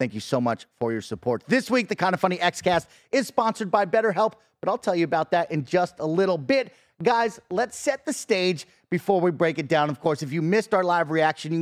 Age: 30-49